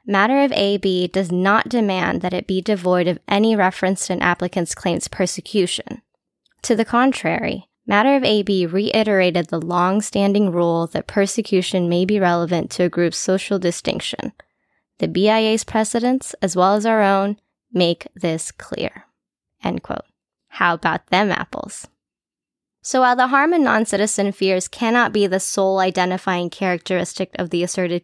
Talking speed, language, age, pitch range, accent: 150 wpm, English, 10-29, 180-215 Hz, American